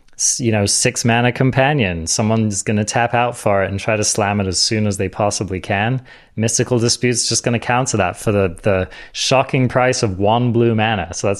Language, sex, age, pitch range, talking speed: English, male, 20-39, 110-130 Hz, 220 wpm